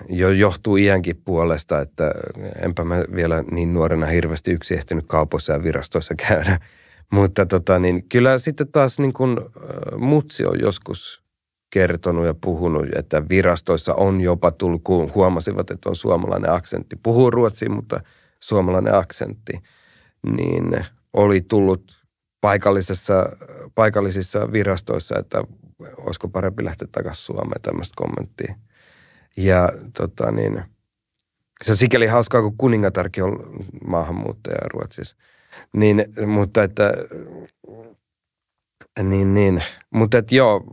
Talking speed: 120 wpm